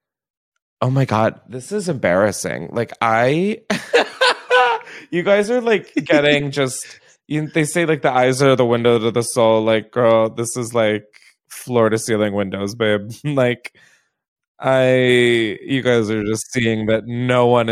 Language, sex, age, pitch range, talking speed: English, male, 20-39, 100-135 Hz, 145 wpm